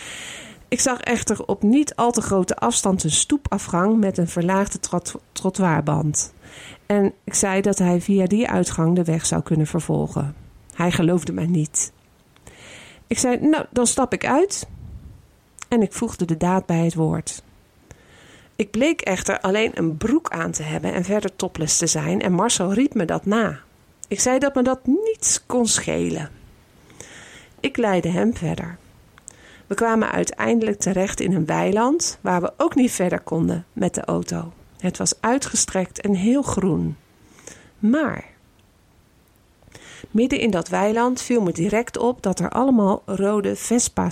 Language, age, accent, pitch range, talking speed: Dutch, 50-69, Dutch, 175-235 Hz, 155 wpm